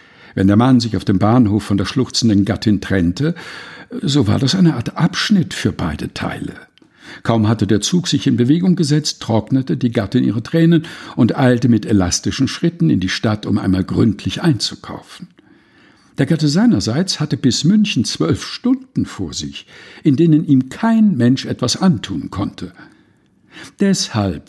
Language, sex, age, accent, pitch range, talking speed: German, male, 60-79, German, 105-170 Hz, 160 wpm